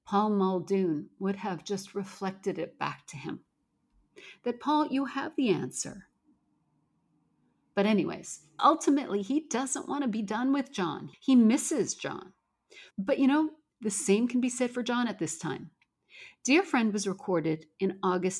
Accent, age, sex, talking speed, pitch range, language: American, 50-69, female, 160 wpm, 180-245 Hz, English